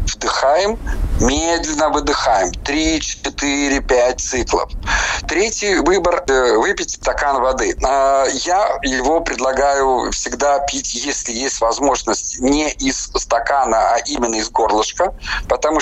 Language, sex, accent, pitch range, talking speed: Russian, male, native, 125-170 Hz, 105 wpm